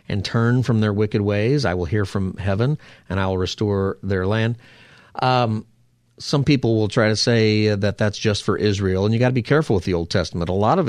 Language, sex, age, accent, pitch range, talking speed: English, male, 50-69, American, 95-120 Hz, 230 wpm